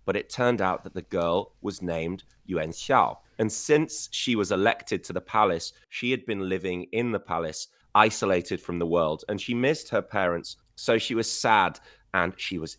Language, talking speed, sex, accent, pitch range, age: English, 195 wpm, male, British, 90-120 Hz, 30-49